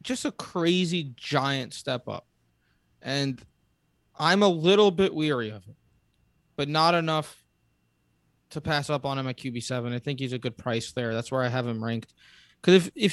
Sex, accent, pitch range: male, American, 130-165 Hz